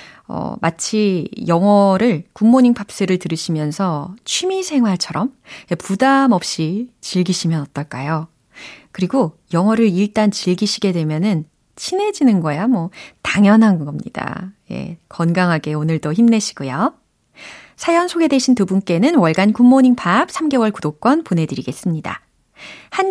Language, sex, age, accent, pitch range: Korean, female, 30-49, native, 175-265 Hz